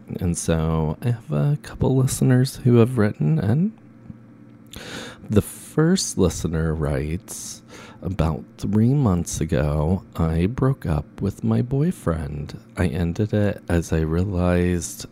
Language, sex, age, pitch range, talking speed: English, male, 40-59, 80-105 Hz, 125 wpm